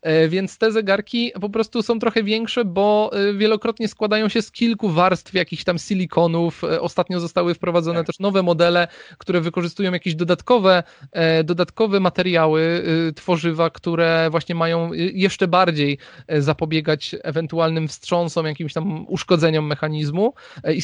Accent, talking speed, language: native, 125 wpm, Polish